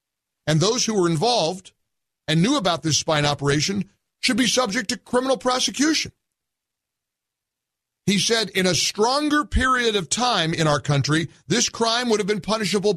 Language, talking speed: English, 155 wpm